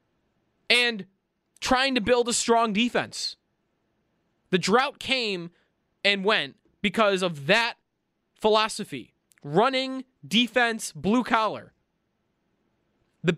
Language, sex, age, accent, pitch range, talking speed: English, male, 20-39, American, 195-240 Hz, 95 wpm